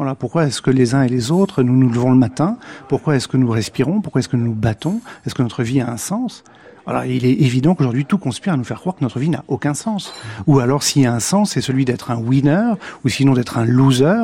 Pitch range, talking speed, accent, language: 125-160 Hz, 275 wpm, French, French